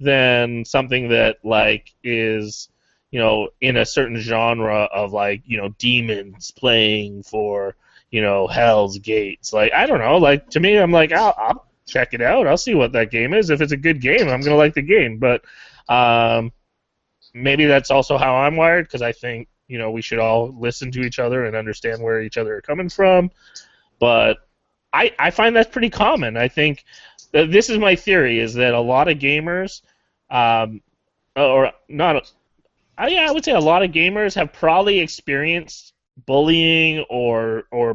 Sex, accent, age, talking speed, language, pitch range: male, American, 20-39, 190 wpm, English, 115-145 Hz